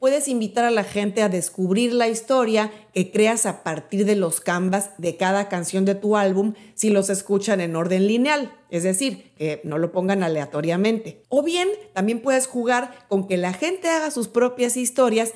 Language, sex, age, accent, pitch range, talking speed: Spanish, female, 40-59, Mexican, 185-240 Hz, 190 wpm